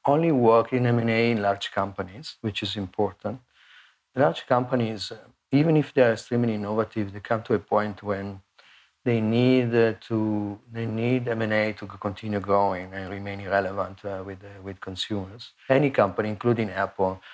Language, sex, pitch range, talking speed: English, male, 100-115 Hz, 155 wpm